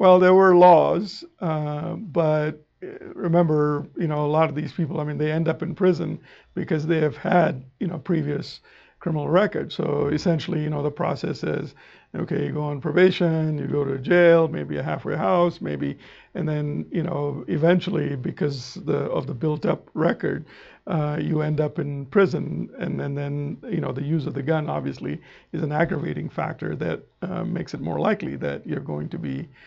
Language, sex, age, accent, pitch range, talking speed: English, male, 50-69, American, 150-175 Hz, 190 wpm